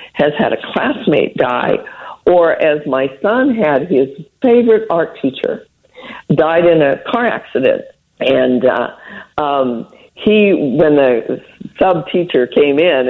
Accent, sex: American, female